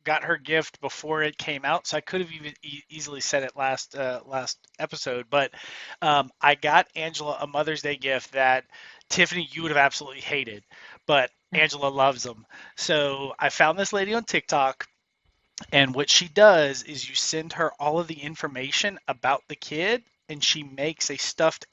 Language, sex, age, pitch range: English, male, 30-49, 140-165 Hz